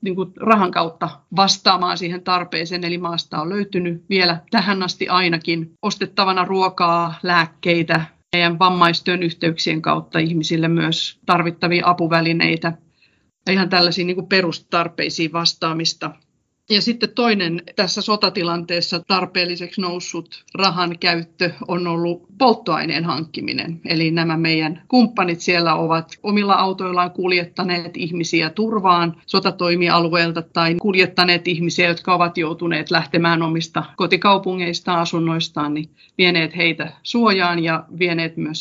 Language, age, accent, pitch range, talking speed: Finnish, 40-59, native, 165-185 Hz, 110 wpm